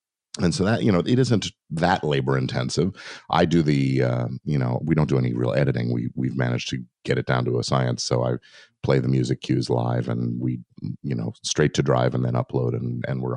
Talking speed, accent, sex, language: 235 wpm, American, male, English